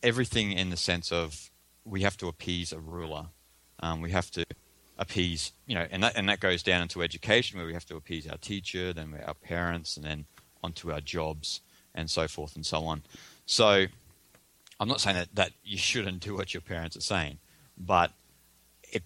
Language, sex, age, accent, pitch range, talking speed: English, male, 30-49, Australian, 80-95 Hz, 200 wpm